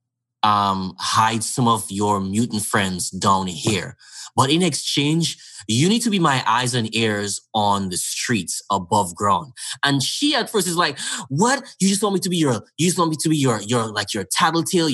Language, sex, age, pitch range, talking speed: English, male, 20-39, 125-175 Hz, 200 wpm